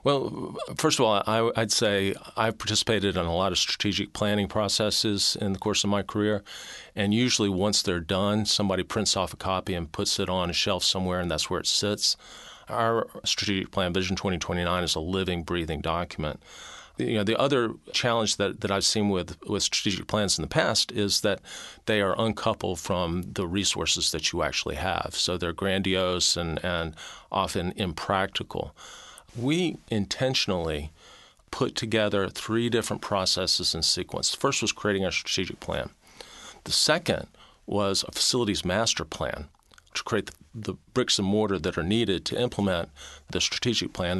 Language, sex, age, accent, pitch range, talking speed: English, male, 40-59, American, 90-105 Hz, 170 wpm